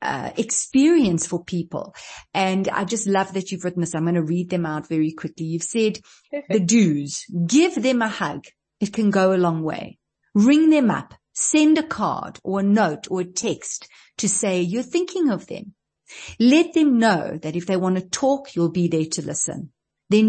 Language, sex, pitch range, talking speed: English, female, 175-220 Hz, 200 wpm